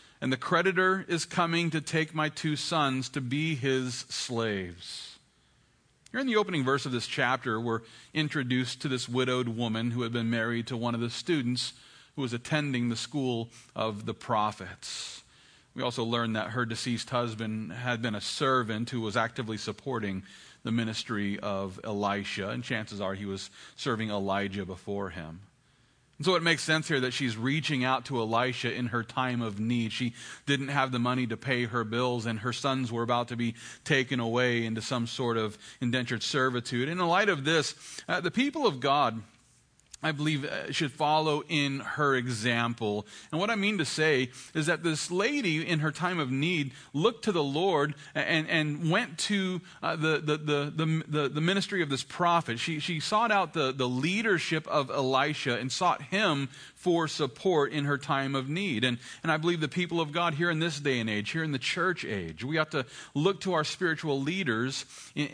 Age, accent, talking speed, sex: 40-59, American, 195 wpm, male